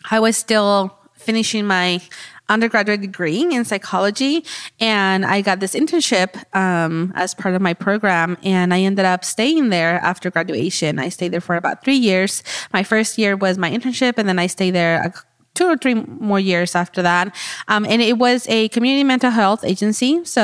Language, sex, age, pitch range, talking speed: English, female, 20-39, 180-215 Hz, 185 wpm